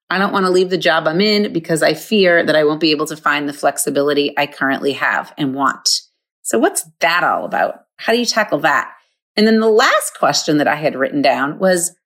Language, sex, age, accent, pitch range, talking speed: English, female, 30-49, American, 155-215 Hz, 235 wpm